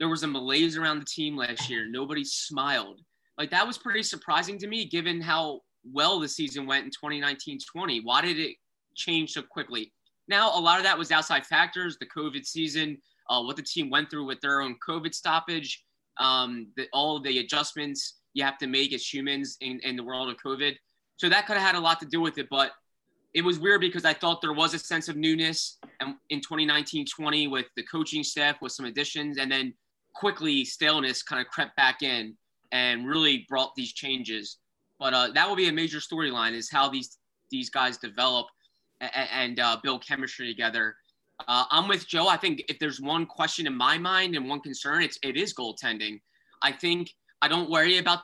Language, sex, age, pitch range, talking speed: English, male, 20-39, 130-165 Hz, 200 wpm